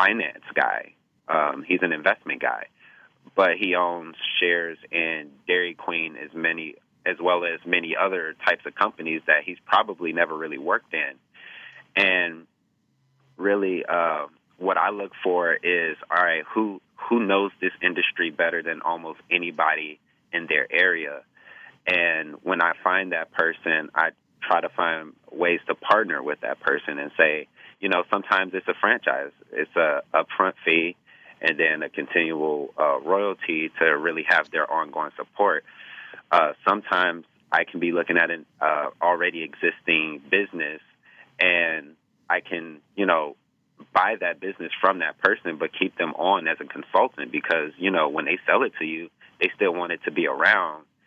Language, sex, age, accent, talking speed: English, male, 30-49, American, 165 wpm